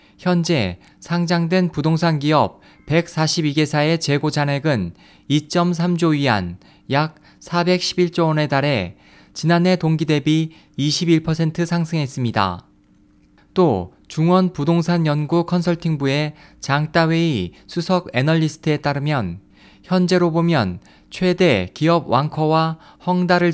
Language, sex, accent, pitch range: Korean, male, native, 135-170 Hz